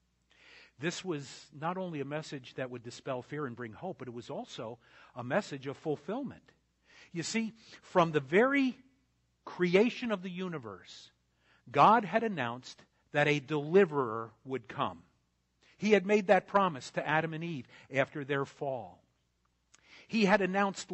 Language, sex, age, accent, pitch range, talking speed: English, male, 50-69, American, 135-190 Hz, 150 wpm